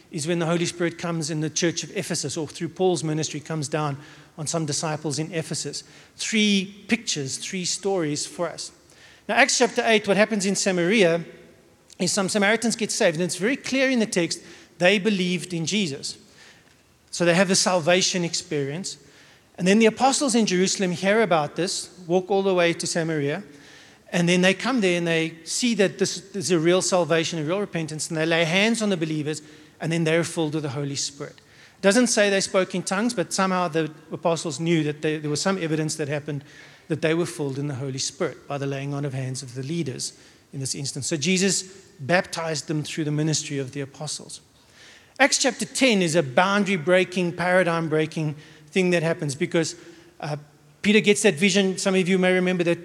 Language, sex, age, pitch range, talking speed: English, male, 40-59, 155-190 Hz, 200 wpm